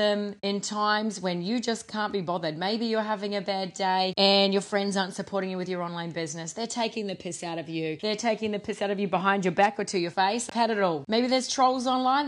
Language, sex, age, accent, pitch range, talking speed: English, female, 30-49, Australian, 195-245 Hz, 255 wpm